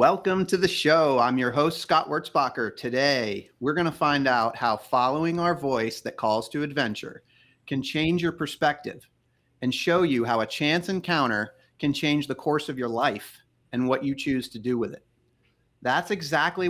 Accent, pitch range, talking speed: American, 125-165 Hz, 185 wpm